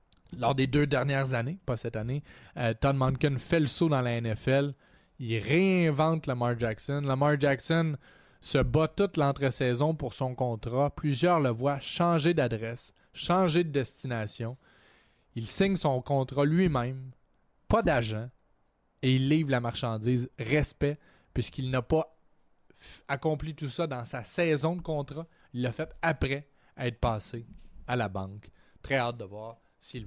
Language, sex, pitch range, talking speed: French, male, 115-150 Hz, 150 wpm